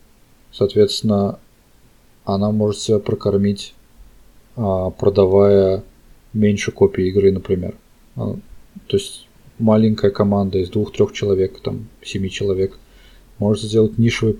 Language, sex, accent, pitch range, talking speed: Russian, male, native, 95-115 Hz, 95 wpm